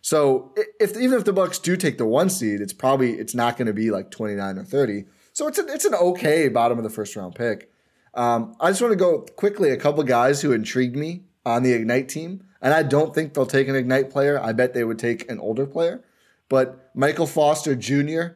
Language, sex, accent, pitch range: English, male, American, 115-165 Hz